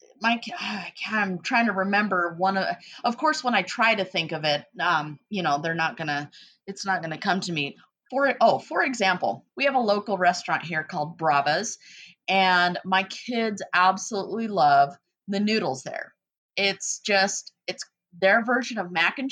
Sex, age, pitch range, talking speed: female, 30-49, 175-230 Hz, 175 wpm